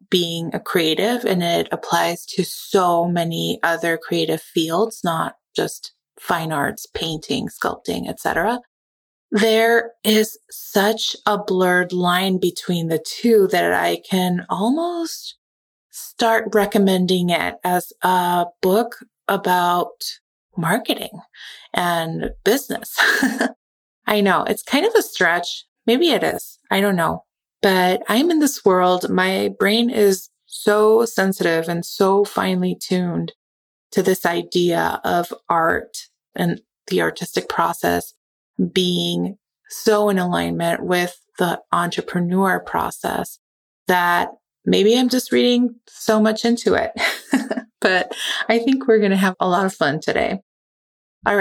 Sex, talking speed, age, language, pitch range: female, 125 wpm, 20-39, English, 175-225 Hz